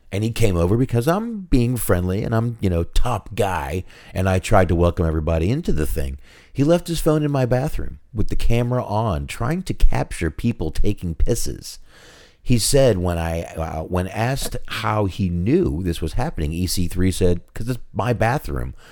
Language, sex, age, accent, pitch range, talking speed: English, male, 40-59, American, 80-115 Hz, 185 wpm